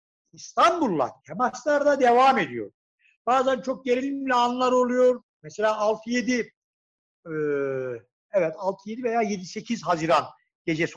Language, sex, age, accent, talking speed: Turkish, male, 60-79, native, 100 wpm